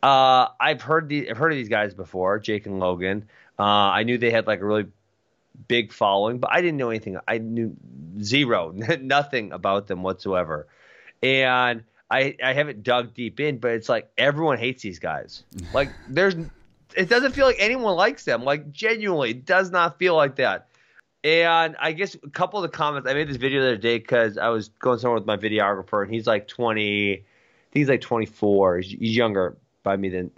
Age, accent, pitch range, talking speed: 20-39, American, 115-155 Hz, 200 wpm